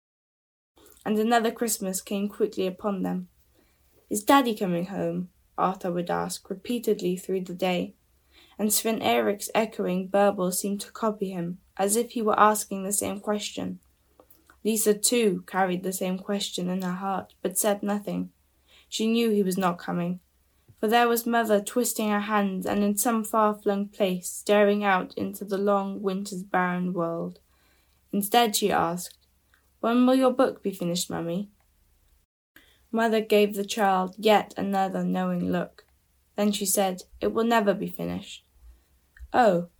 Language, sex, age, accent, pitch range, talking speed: English, female, 10-29, British, 175-210 Hz, 150 wpm